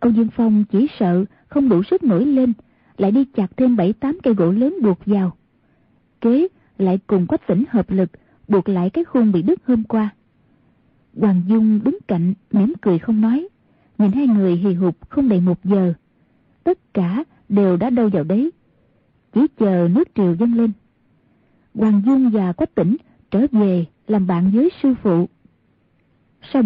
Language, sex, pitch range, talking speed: Vietnamese, female, 195-255 Hz, 175 wpm